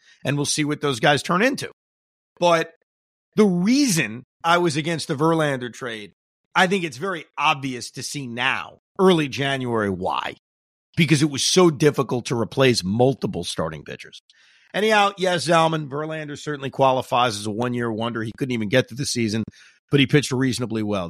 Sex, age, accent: male, 40-59, American